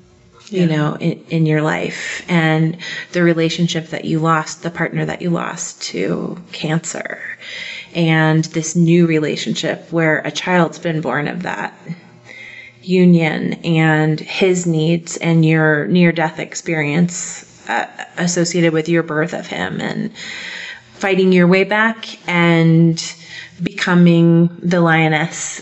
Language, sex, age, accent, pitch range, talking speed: English, female, 30-49, American, 160-180 Hz, 130 wpm